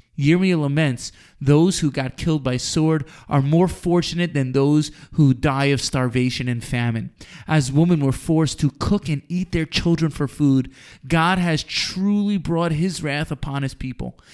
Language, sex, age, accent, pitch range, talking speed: English, male, 30-49, American, 135-175 Hz, 165 wpm